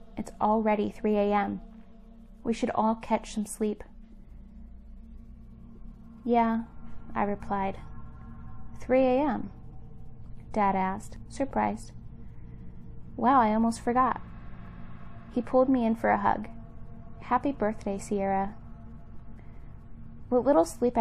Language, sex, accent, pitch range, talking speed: English, female, American, 190-225 Hz, 100 wpm